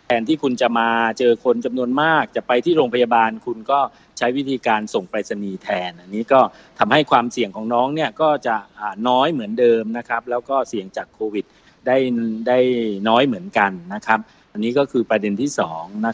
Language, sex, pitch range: Thai, male, 115-140 Hz